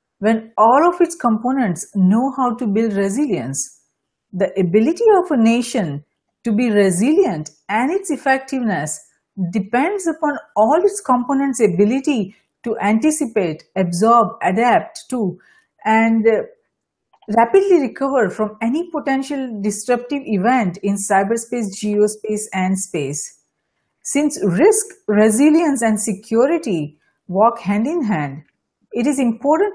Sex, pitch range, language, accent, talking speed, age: female, 210-280 Hz, English, Indian, 115 wpm, 50-69